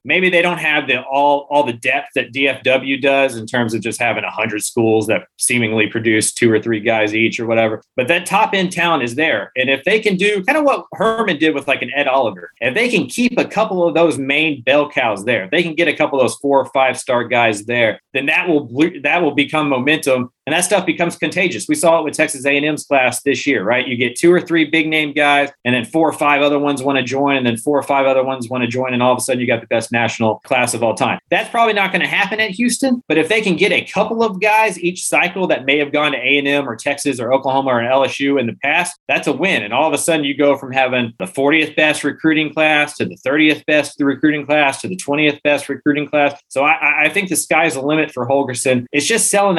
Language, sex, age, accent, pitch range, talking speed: English, male, 30-49, American, 130-170 Hz, 265 wpm